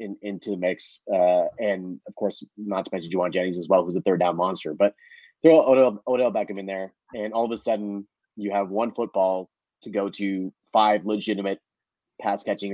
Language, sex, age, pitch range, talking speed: English, male, 30-49, 100-120 Hz, 195 wpm